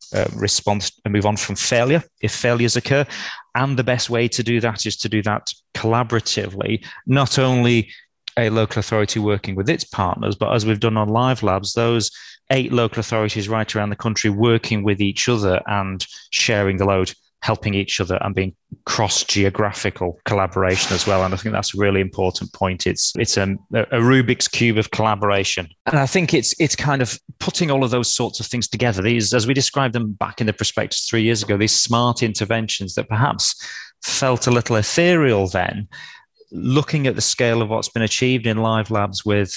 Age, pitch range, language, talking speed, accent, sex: 30-49, 100-120 Hz, English, 195 wpm, British, male